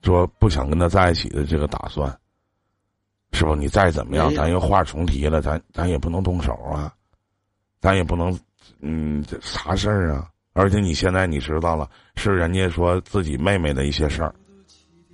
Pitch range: 85-120 Hz